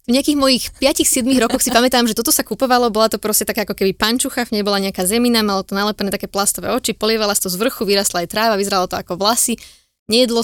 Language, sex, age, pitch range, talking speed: Slovak, female, 20-39, 195-245 Hz, 230 wpm